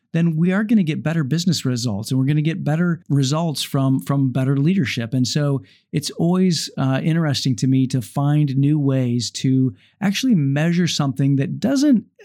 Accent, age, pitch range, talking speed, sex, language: American, 50-69, 130-170 Hz, 185 wpm, male, English